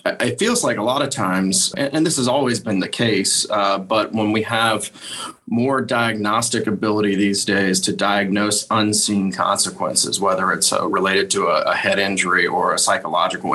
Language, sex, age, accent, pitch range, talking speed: English, male, 30-49, American, 95-110 Hz, 175 wpm